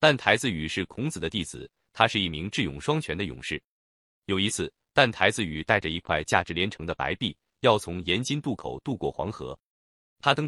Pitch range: 80-135 Hz